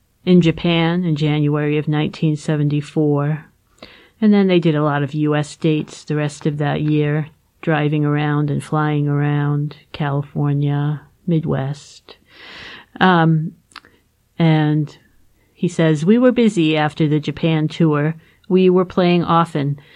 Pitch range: 150-180 Hz